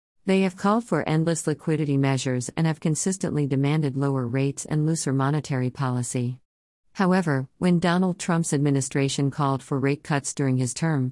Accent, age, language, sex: American, 50-69, English, female